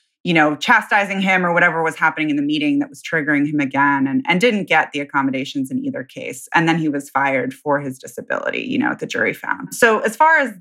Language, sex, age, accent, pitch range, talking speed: English, female, 20-39, American, 140-185 Hz, 240 wpm